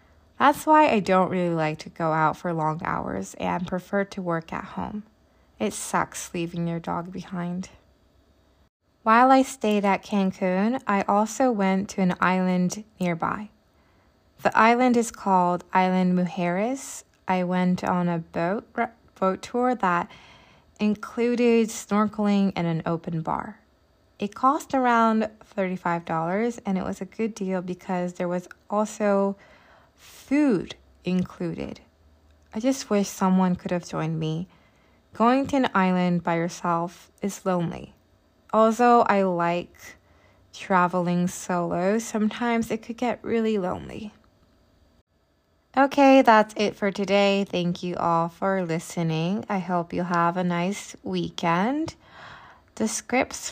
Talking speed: 135 wpm